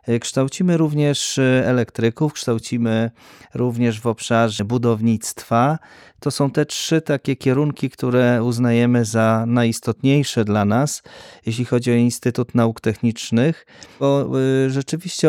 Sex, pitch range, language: male, 105-135 Hz, Polish